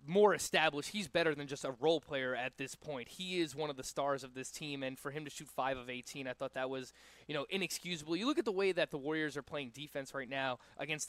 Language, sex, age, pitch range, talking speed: English, male, 20-39, 135-165 Hz, 270 wpm